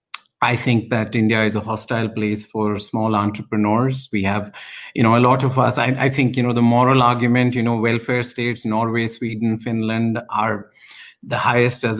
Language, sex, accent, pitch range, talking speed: English, male, Indian, 115-140 Hz, 190 wpm